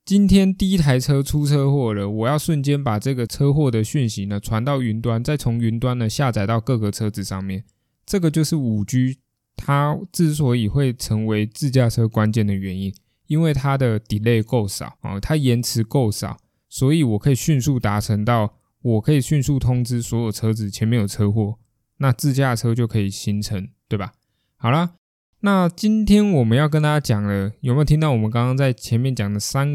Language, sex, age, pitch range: Chinese, male, 20-39, 110-140 Hz